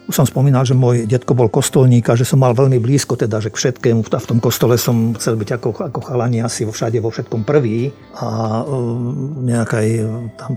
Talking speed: 215 wpm